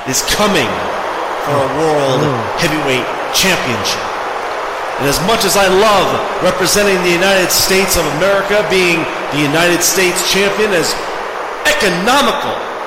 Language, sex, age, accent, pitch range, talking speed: English, male, 40-59, American, 155-205 Hz, 120 wpm